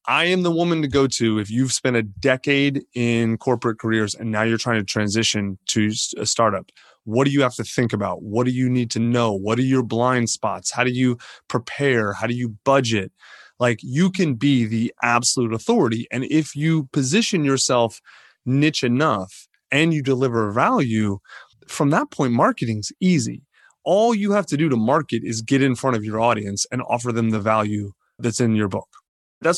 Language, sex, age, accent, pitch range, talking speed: English, male, 30-49, American, 115-145 Hz, 200 wpm